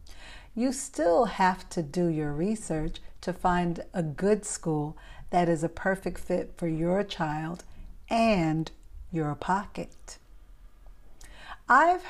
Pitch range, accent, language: 160-205 Hz, American, English